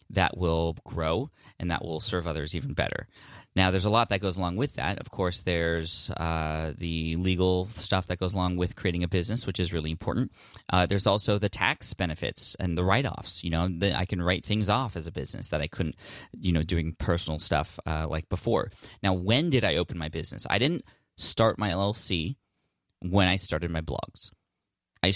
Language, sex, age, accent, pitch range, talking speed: English, male, 20-39, American, 85-100 Hz, 205 wpm